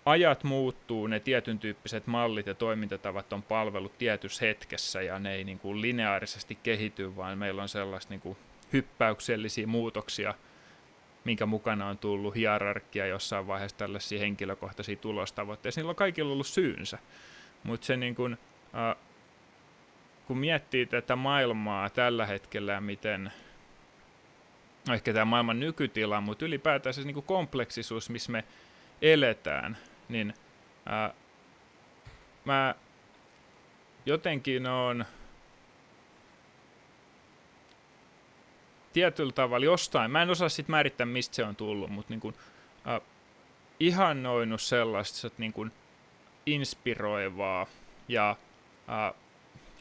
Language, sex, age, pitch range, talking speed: Finnish, male, 30-49, 105-130 Hz, 110 wpm